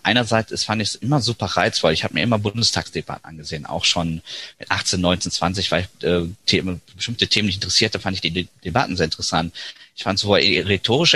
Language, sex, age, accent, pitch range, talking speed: German, male, 30-49, German, 100-130 Hz, 205 wpm